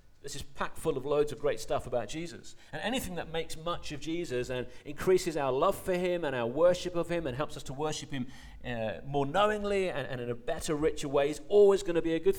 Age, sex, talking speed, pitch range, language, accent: 40-59, male, 250 wpm, 125-170 Hz, English, British